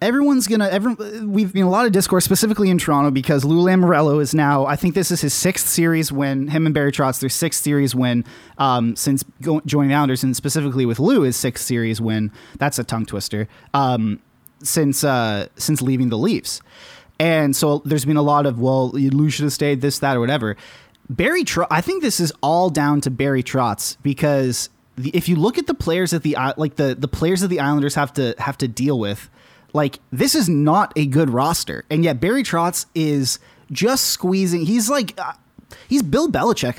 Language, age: English, 20-39